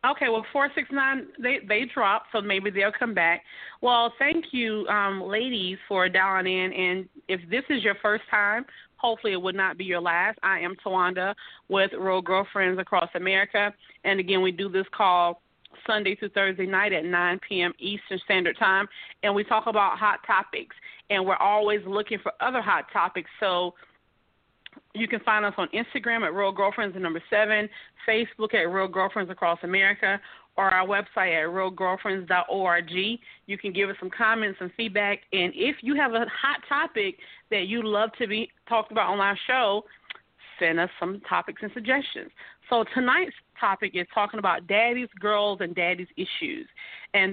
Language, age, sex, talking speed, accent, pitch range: English, 40-59, female, 175 wpm, American, 185-230 Hz